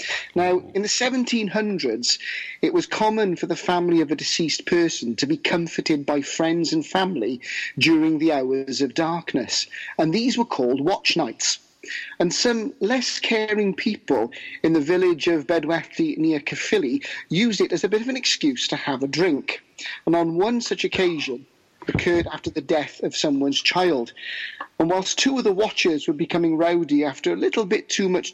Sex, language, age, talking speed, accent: male, English, 40-59, 180 wpm, British